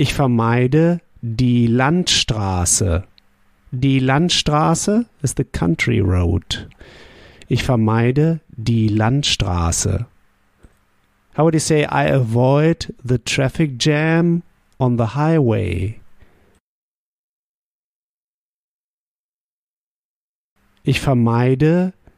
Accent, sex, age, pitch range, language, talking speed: German, male, 50-69, 105-145 Hz, German, 75 wpm